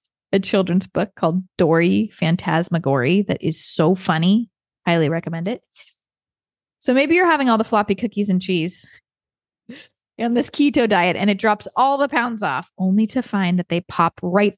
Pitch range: 180-225 Hz